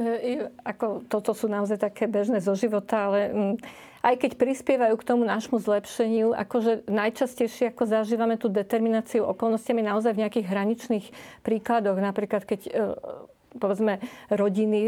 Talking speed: 130 wpm